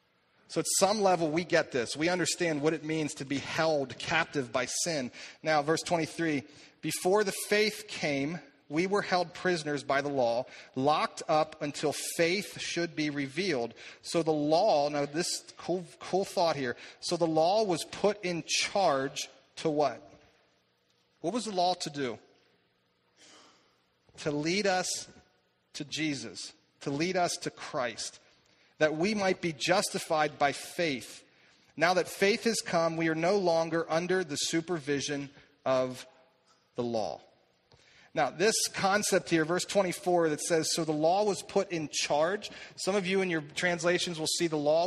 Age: 40-59